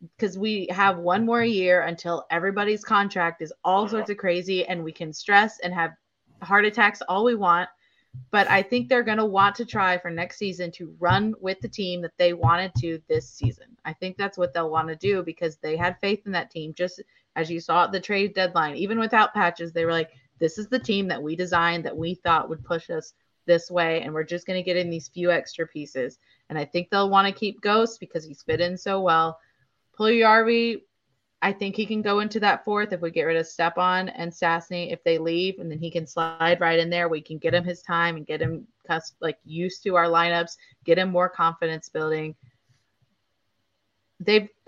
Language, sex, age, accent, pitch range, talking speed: English, female, 30-49, American, 165-205 Hz, 225 wpm